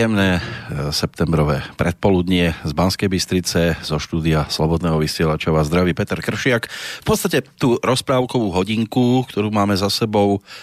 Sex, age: male, 40-59